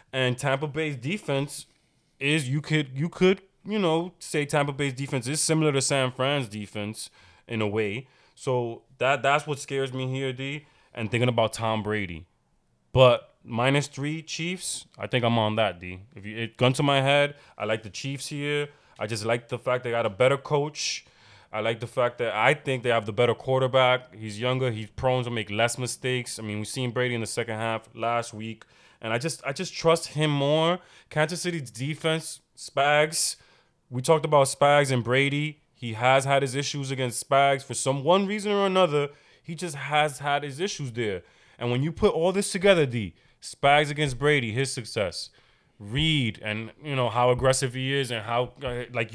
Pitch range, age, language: 115-145 Hz, 20-39, English